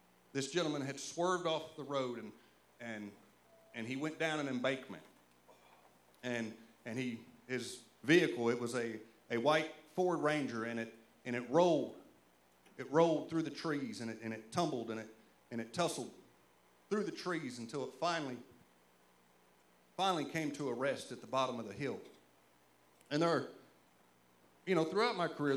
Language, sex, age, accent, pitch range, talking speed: English, male, 40-59, American, 110-145 Hz, 170 wpm